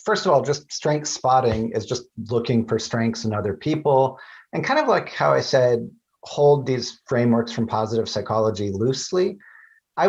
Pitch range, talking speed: 110-145 Hz, 175 wpm